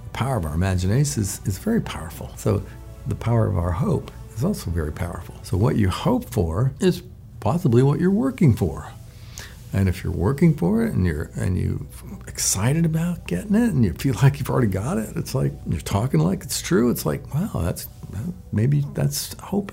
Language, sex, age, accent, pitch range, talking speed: English, male, 60-79, American, 100-155 Hz, 200 wpm